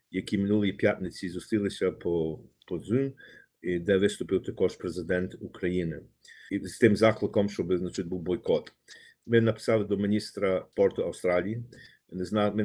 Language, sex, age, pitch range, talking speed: Ukrainian, male, 50-69, 95-115 Hz, 125 wpm